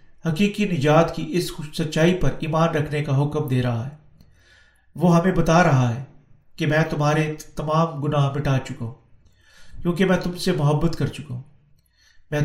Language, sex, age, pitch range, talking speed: Urdu, male, 40-59, 135-170 Hz, 170 wpm